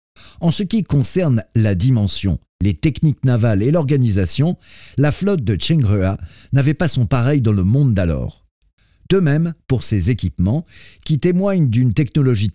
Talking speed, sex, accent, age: 155 wpm, male, French, 50-69